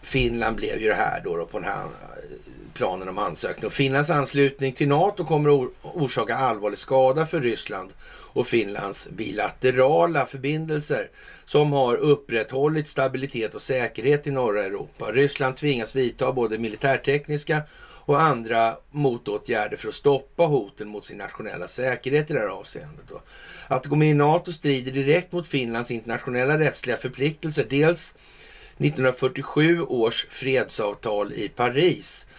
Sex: male